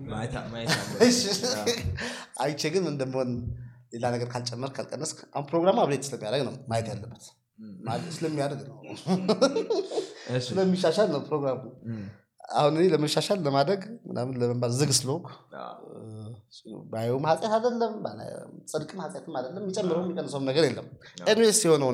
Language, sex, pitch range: Amharic, male, 125-210 Hz